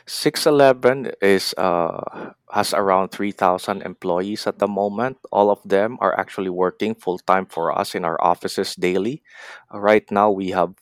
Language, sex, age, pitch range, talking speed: English, male, 20-39, 90-105 Hz, 155 wpm